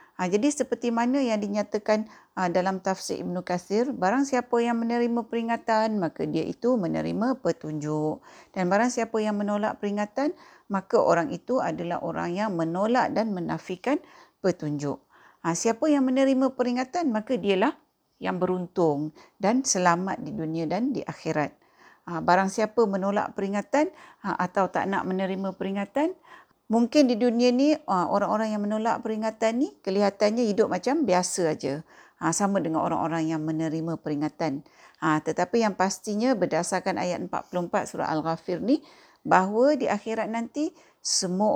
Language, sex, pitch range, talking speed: Malay, female, 170-235 Hz, 140 wpm